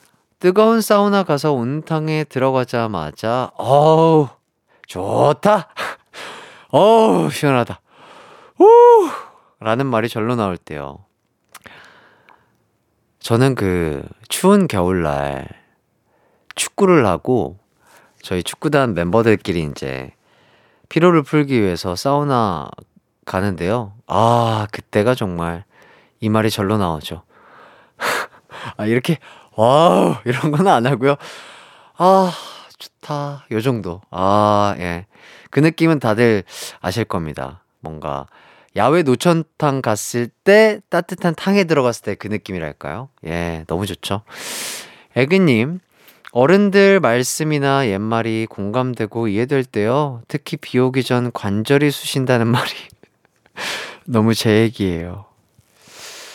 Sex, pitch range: male, 100-150 Hz